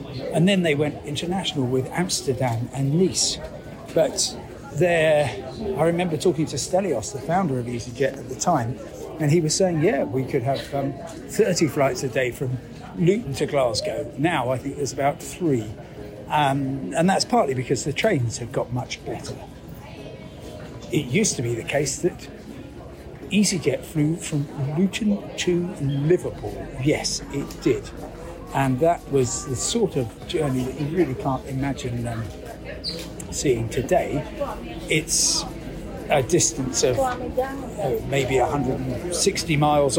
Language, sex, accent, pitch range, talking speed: English, male, British, 130-175 Hz, 145 wpm